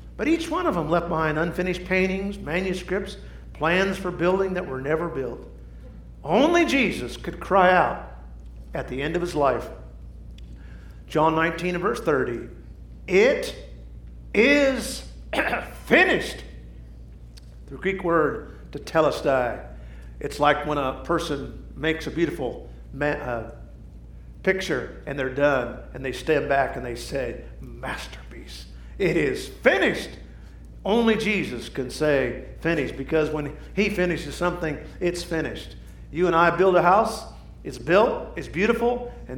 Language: English